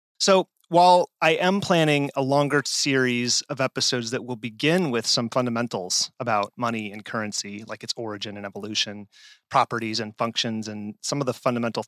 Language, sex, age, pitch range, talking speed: English, male, 30-49, 115-145 Hz, 165 wpm